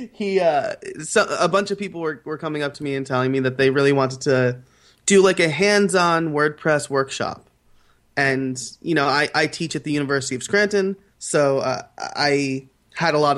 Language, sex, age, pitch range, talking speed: English, male, 20-39, 130-150 Hz, 195 wpm